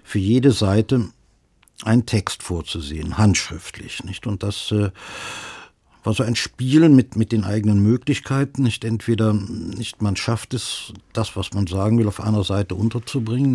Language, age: German, 60-79